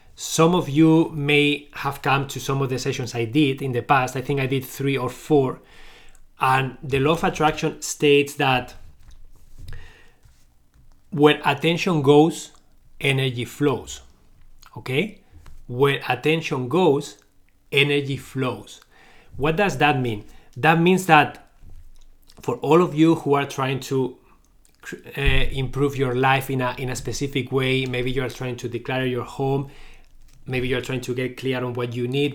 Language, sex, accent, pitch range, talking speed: English, male, Spanish, 125-150 Hz, 155 wpm